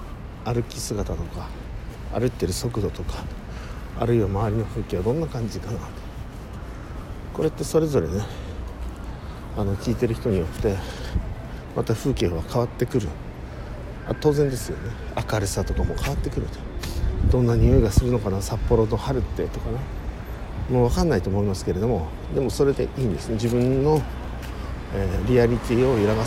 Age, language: 50-69, Japanese